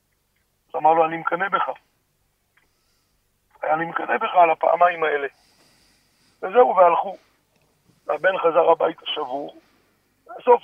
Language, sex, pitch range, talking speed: Hebrew, male, 150-200 Hz, 100 wpm